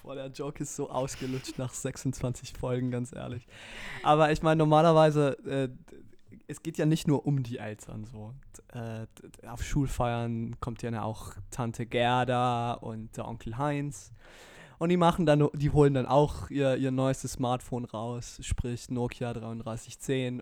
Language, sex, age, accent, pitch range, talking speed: German, male, 20-39, German, 115-135 Hz, 160 wpm